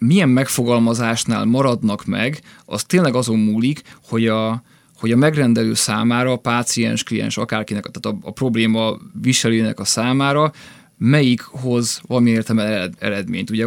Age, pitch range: 20-39, 110-130 Hz